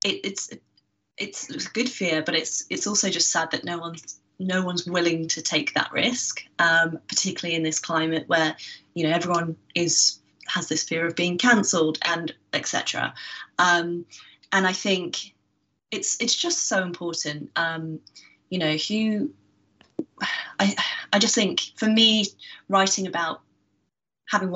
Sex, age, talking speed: female, 20-39, 150 wpm